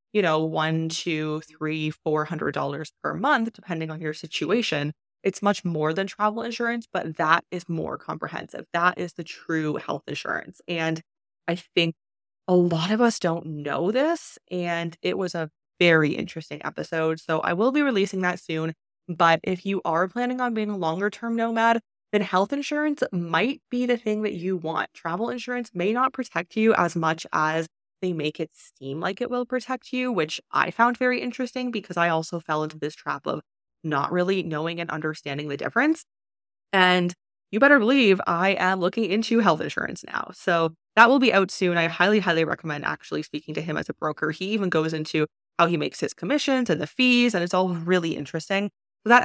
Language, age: English, 20-39